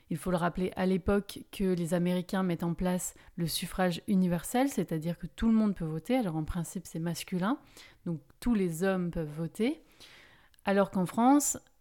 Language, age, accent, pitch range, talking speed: French, 30-49, French, 170-205 Hz, 185 wpm